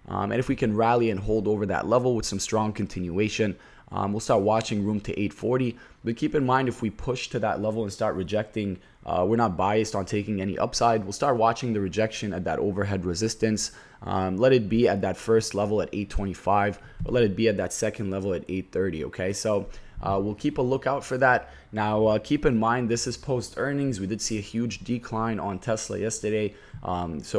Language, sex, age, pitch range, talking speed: English, male, 20-39, 100-120 Hz, 220 wpm